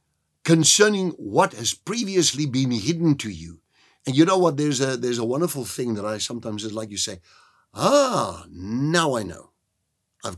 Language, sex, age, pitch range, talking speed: English, male, 60-79, 95-140 Hz, 175 wpm